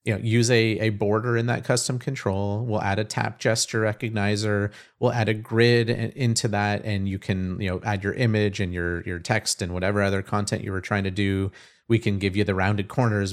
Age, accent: 30-49, American